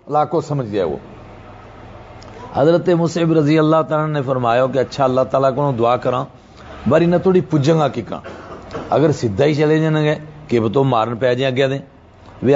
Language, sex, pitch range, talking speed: Urdu, male, 130-175 Hz, 170 wpm